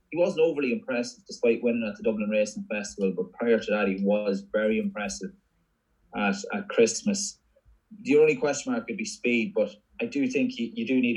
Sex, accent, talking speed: male, Irish, 200 wpm